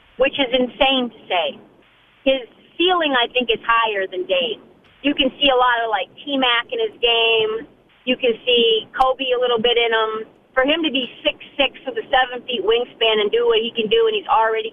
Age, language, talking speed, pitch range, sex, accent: 40-59, English, 220 wpm, 230-275 Hz, female, American